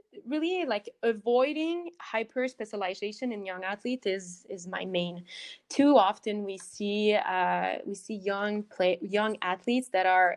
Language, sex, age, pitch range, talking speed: English, female, 20-39, 190-225 Hz, 145 wpm